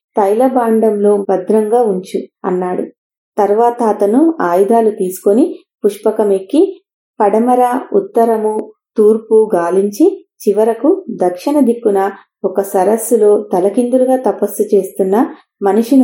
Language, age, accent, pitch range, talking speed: English, 30-49, Indian, 200-250 Hz, 80 wpm